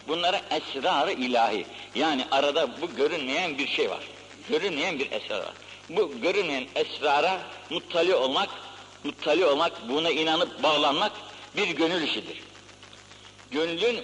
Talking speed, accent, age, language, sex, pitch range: 120 wpm, native, 60-79, Turkish, male, 160-235 Hz